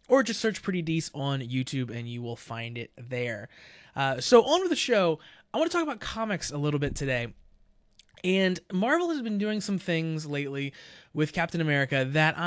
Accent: American